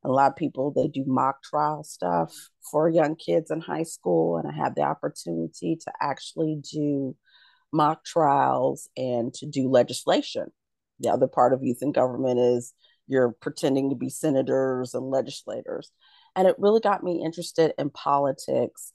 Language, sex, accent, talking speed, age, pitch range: English, female, American, 165 wpm, 40-59, 130-185 Hz